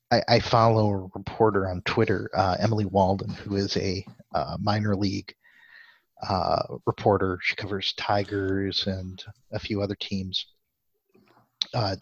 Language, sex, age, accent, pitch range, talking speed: English, male, 30-49, American, 95-115 Hz, 135 wpm